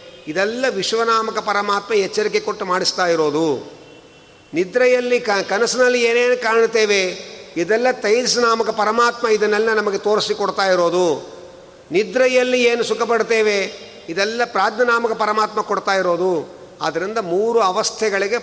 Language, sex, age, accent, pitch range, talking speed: Kannada, male, 50-69, native, 190-235 Hz, 100 wpm